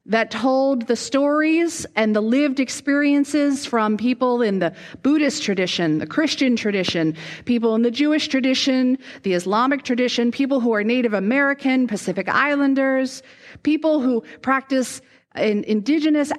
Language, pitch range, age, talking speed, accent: English, 235-285 Hz, 40-59, 135 wpm, American